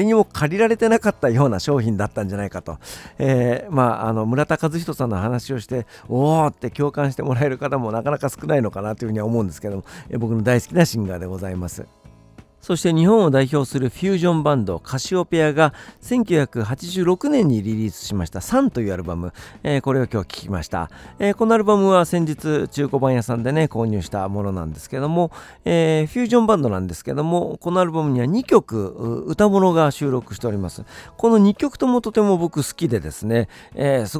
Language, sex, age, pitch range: Japanese, male, 50-69, 110-175 Hz